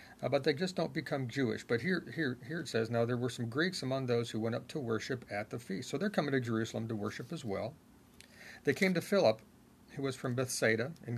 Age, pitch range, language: 40-59, 110-125 Hz, English